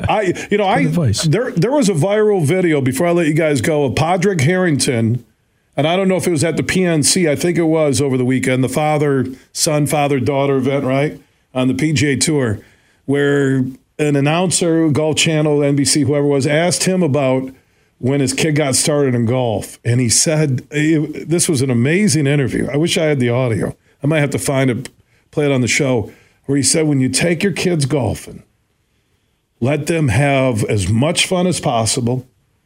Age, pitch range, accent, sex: 40-59, 130-160 Hz, American, male